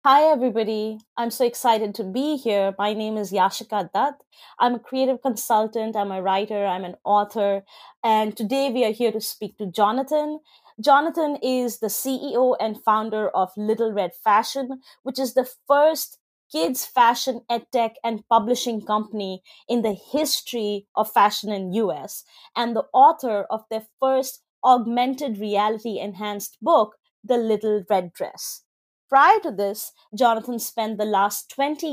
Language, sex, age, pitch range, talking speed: English, female, 20-39, 210-260 Hz, 150 wpm